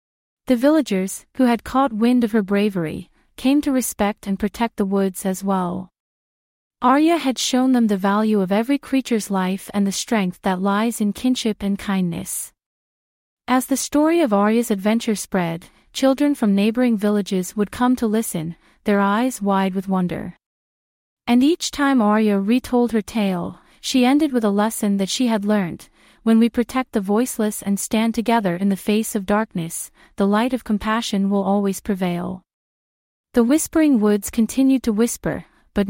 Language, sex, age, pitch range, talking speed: English, female, 40-59, 195-245 Hz, 165 wpm